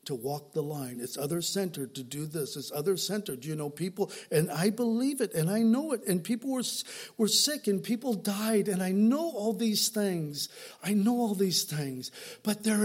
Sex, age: male, 50-69